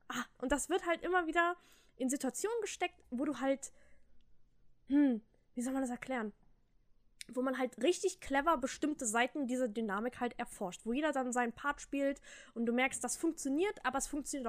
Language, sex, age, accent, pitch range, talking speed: German, female, 10-29, German, 245-335 Hz, 180 wpm